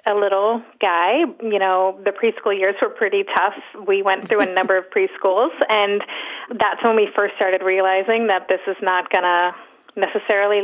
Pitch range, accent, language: 195-255 Hz, American, English